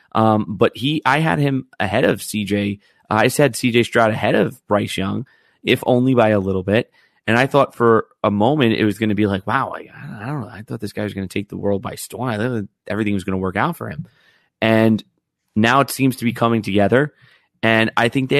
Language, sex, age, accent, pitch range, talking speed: English, male, 30-49, American, 105-120 Hz, 240 wpm